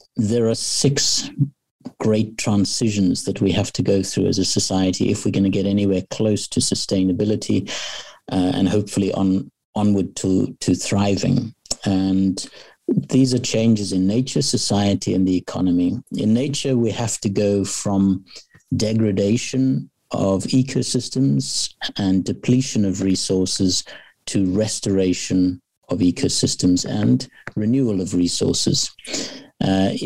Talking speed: 125 wpm